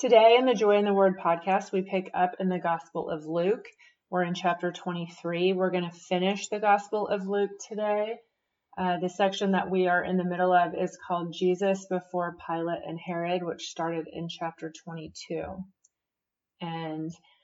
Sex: female